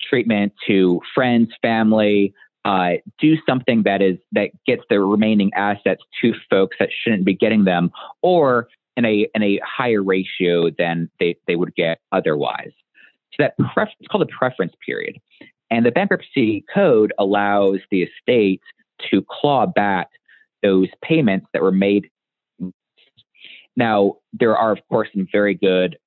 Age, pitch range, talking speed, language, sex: 30-49, 95-110 Hz, 145 wpm, English, male